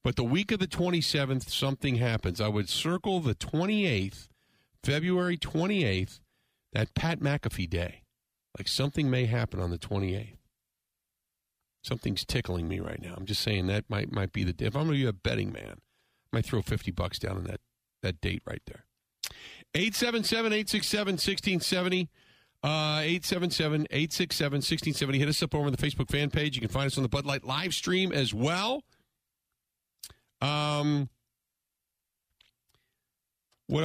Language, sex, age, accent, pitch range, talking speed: English, male, 50-69, American, 90-145 Hz, 155 wpm